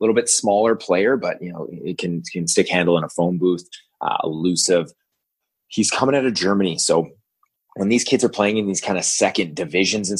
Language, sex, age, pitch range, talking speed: English, male, 20-39, 85-140 Hz, 220 wpm